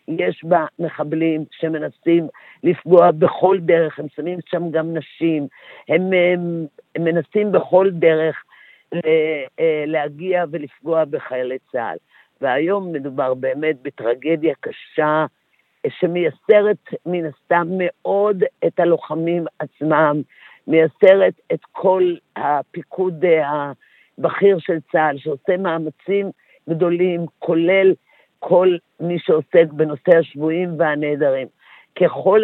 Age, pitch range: 50-69, 150-180 Hz